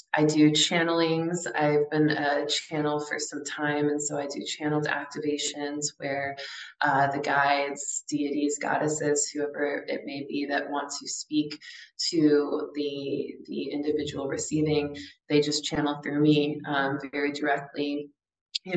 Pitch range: 145-170 Hz